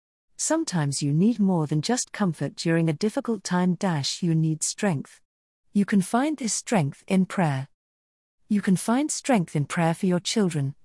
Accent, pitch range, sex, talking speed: British, 150-215 Hz, female, 165 wpm